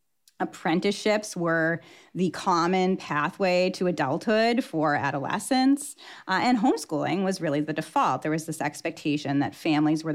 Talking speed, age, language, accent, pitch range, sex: 135 wpm, 30-49, English, American, 155-200 Hz, female